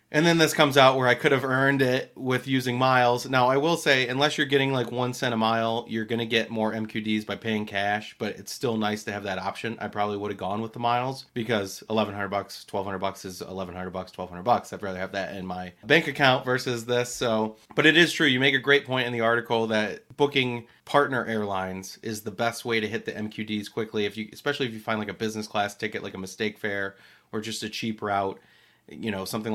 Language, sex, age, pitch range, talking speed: English, male, 30-49, 105-120 Hz, 235 wpm